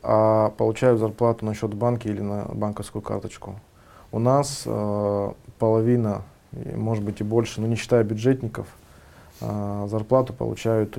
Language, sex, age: Russian, male, 20-39